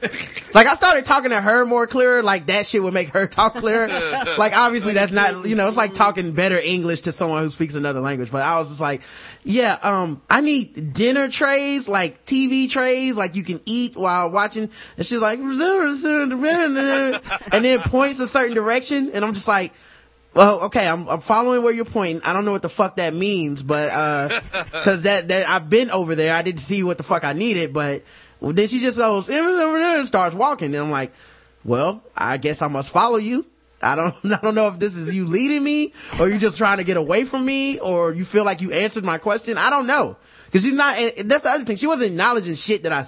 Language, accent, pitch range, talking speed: English, American, 165-245 Hz, 230 wpm